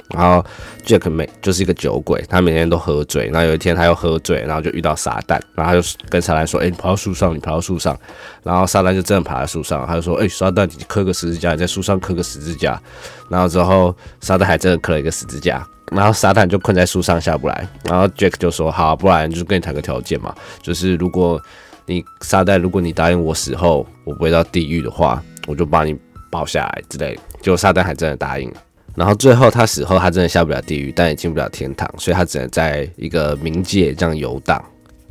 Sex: male